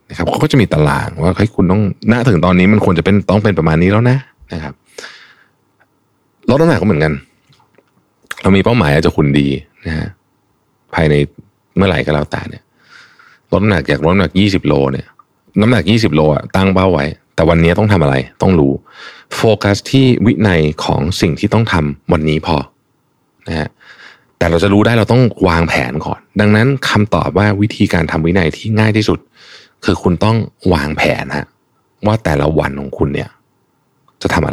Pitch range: 85-120 Hz